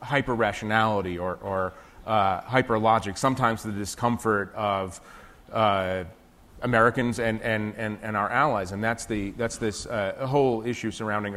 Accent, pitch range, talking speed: American, 100-115 Hz, 125 wpm